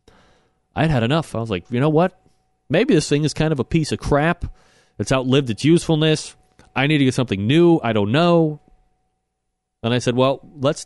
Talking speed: 205 wpm